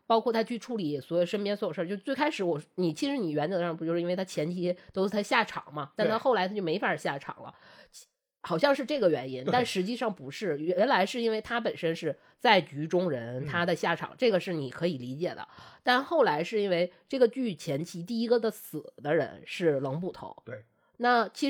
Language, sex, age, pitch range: Chinese, female, 20-39, 155-240 Hz